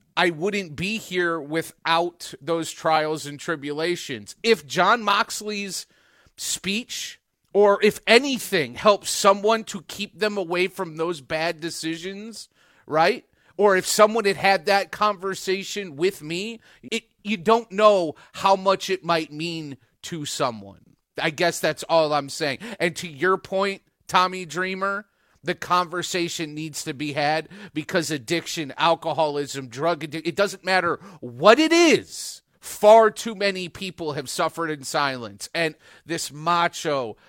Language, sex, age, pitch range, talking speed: English, male, 30-49, 160-200 Hz, 140 wpm